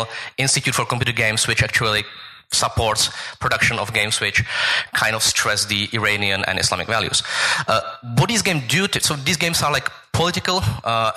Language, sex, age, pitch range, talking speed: English, male, 30-49, 110-140 Hz, 165 wpm